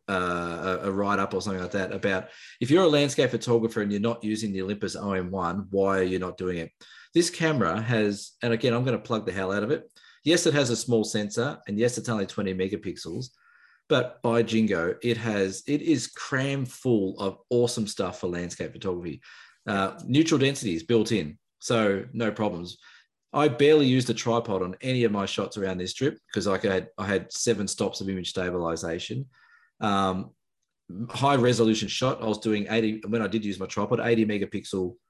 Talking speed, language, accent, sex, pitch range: 200 wpm, English, Australian, male, 95-120 Hz